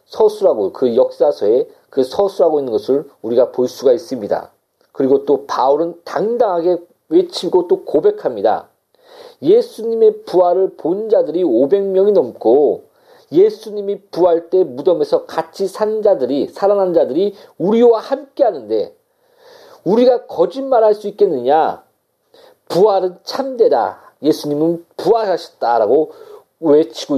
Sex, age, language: male, 40-59, Korean